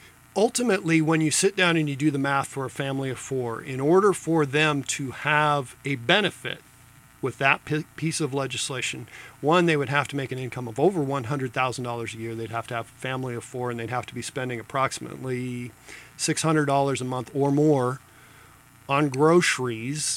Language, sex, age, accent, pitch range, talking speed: English, male, 40-59, American, 125-155 Hz, 185 wpm